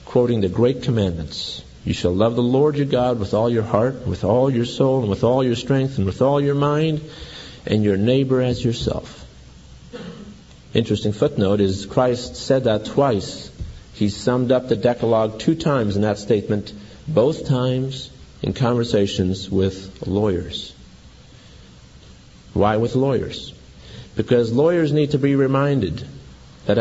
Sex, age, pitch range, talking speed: male, 50-69, 100-130 Hz, 150 wpm